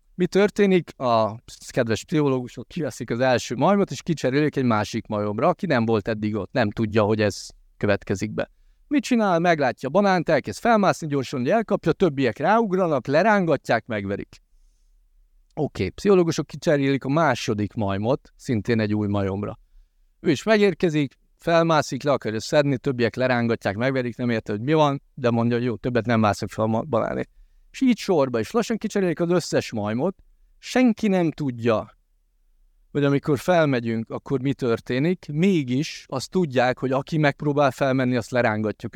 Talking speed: 155 wpm